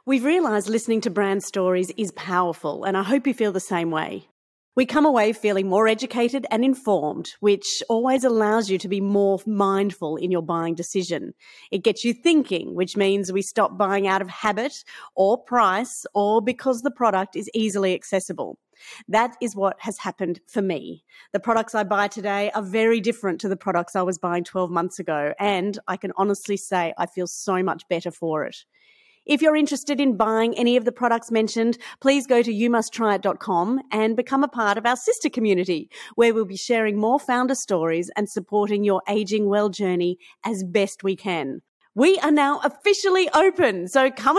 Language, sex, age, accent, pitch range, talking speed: English, female, 40-59, Australian, 190-250 Hz, 190 wpm